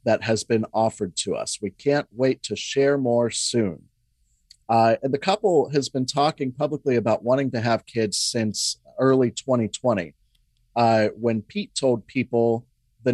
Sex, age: male, 40-59